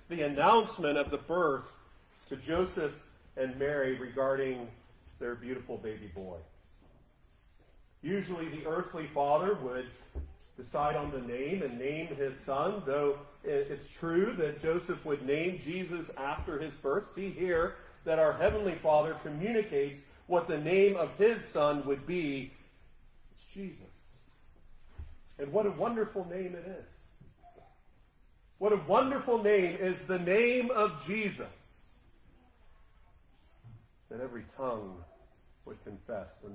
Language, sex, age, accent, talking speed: English, male, 40-59, American, 125 wpm